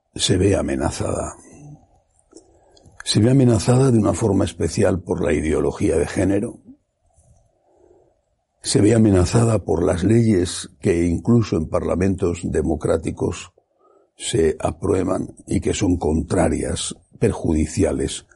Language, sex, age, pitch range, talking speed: Spanish, male, 60-79, 85-110 Hz, 110 wpm